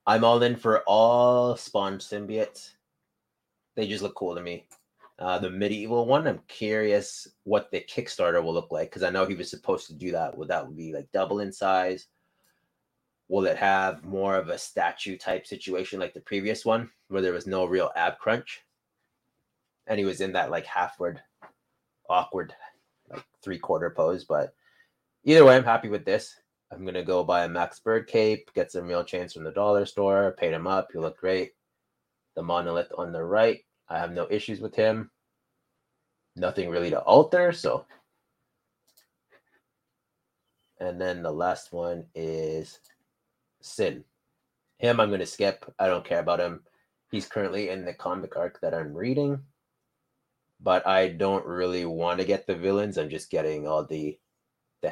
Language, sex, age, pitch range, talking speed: English, male, 30-49, 90-115 Hz, 175 wpm